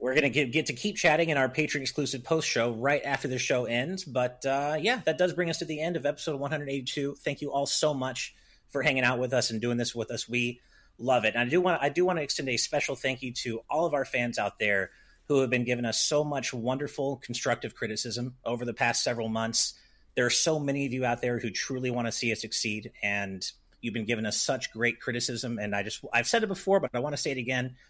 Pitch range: 115-140 Hz